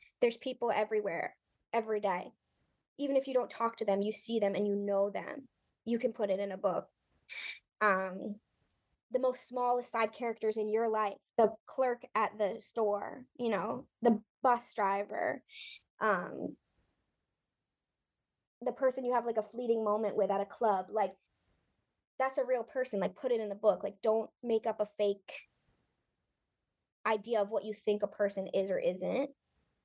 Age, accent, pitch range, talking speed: 20-39, American, 210-260 Hz, 170 wpm